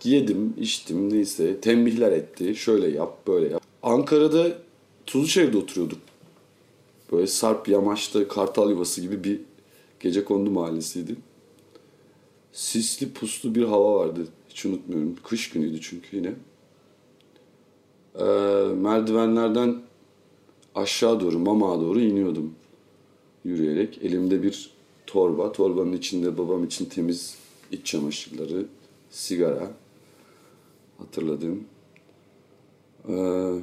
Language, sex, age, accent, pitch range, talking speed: Turkish, male, 40-59, native, 95-125 Hz, 95 wpm